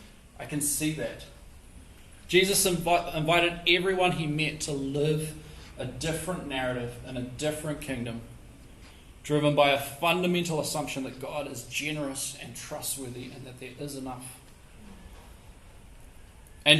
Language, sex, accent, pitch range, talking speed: English, male, Australian, 125-150 Hz, 125 wpm